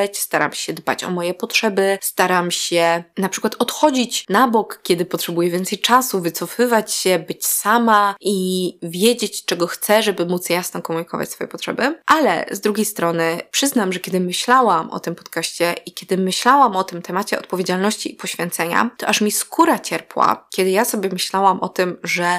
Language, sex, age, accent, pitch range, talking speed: Polish, female, 20-39, native, 175-215 Hz, 170 wpm